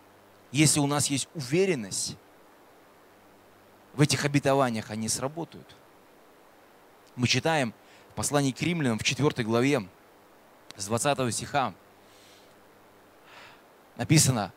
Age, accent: 20-39, native